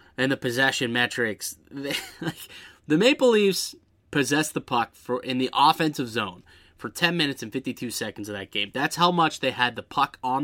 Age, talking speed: 20-39, 185 wpm